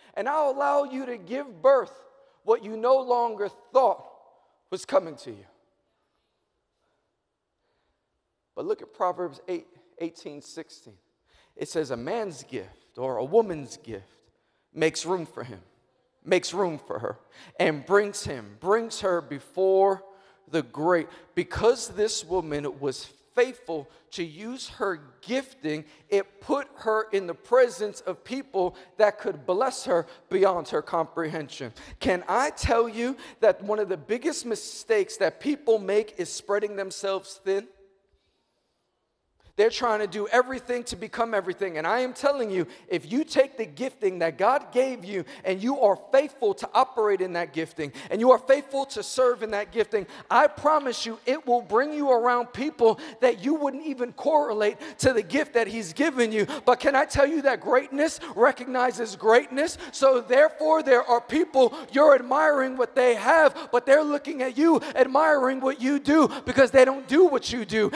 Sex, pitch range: male, 195-270 Hz